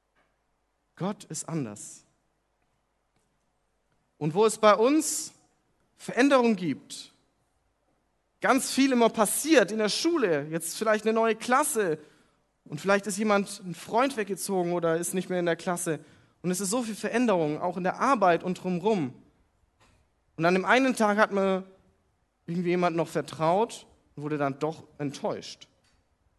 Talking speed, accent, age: 145 wpm, German, 40-59